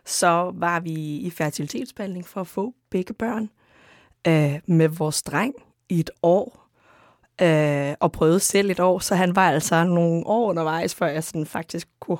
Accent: native